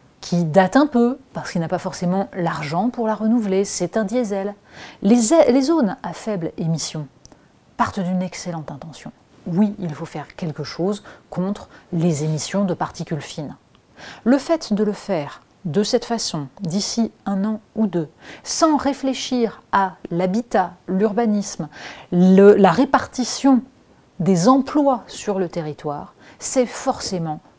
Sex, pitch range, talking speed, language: female, 170-230 Hz, 140 wpm, French